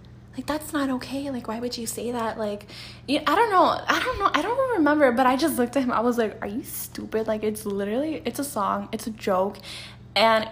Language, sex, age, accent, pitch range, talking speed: English, female, 10-29, American, 210-275 Hz, 245 wpm